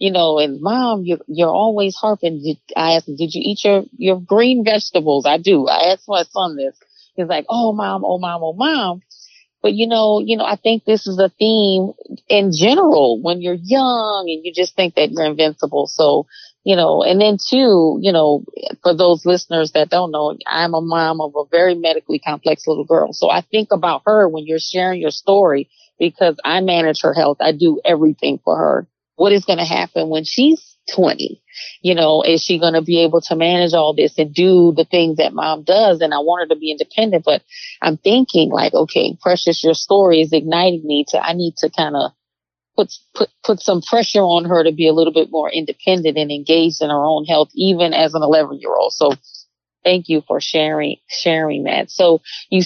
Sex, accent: female, American